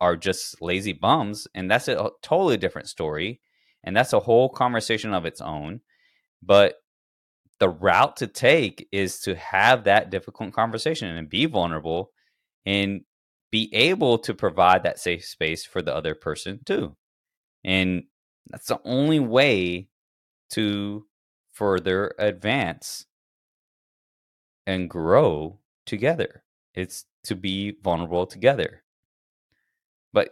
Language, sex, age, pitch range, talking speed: English, male, 20-39, 80-100 Hz, 125 wpm